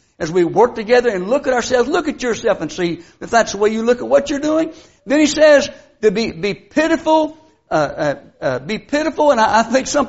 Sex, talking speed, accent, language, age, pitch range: male, 240 wpm, American, English, 60-79, 185-300 Hz